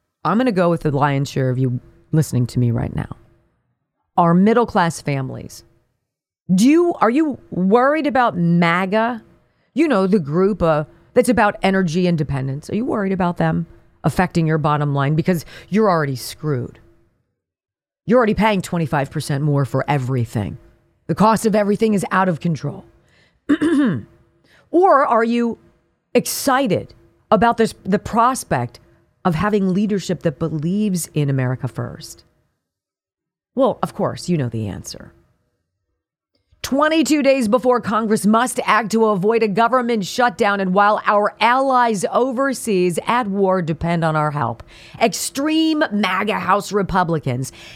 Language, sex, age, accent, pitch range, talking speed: English, female, 40-59, American, 145-225 Hz, 140 wpm